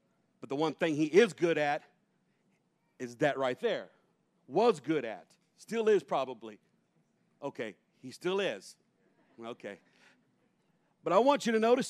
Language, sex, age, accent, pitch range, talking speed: English, male, 50-69, American, 155-200 Hz, 145 wpm